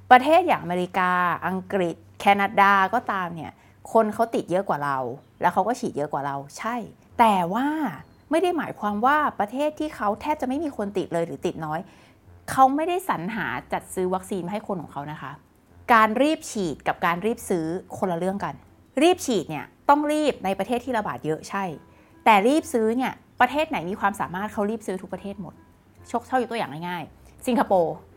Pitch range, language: 170-240 Hz, English